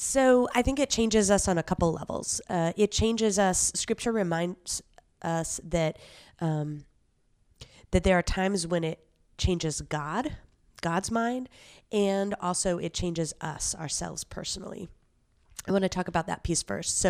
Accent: American